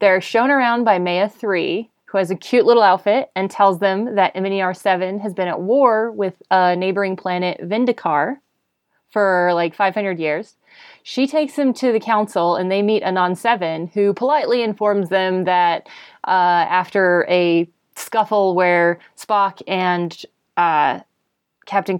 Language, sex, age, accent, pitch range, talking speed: English, female, 20-39, American, 180-215 Hz, 150 wpm